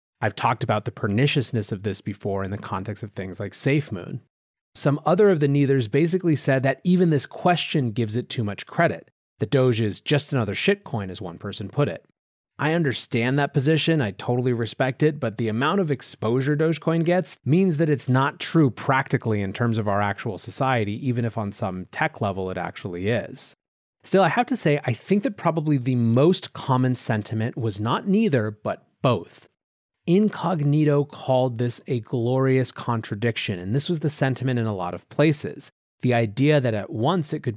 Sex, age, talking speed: male, 30-49, 190 wpm